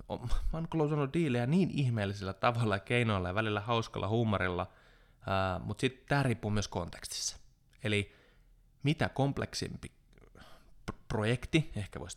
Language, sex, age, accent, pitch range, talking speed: Finnish, male, 20-39, native, 95-125 Hz, 120 wpm